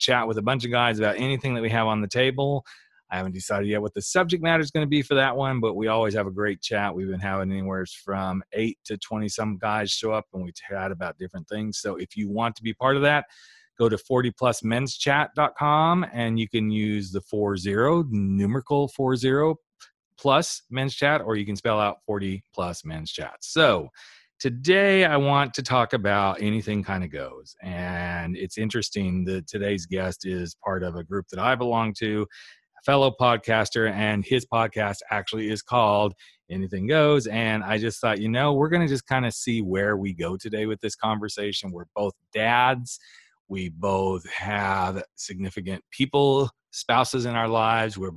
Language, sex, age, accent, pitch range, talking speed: English, male, 40-59, American, 100-125 Hz, 195 wpm